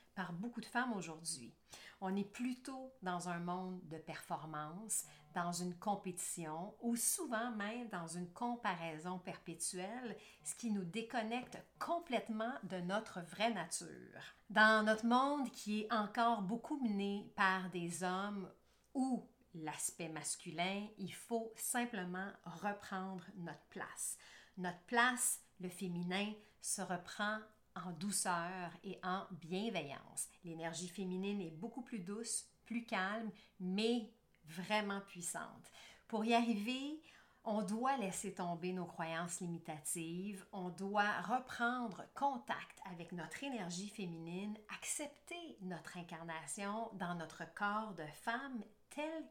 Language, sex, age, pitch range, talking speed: French, female, 50-69, 180-230 Hz, 120 wpm